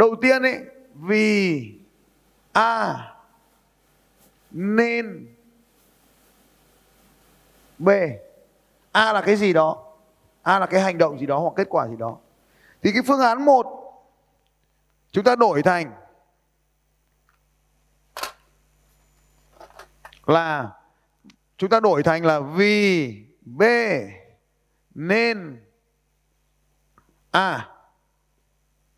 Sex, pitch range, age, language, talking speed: male, 160-220 Hz, 30-49, Vietnamese, 90 wpm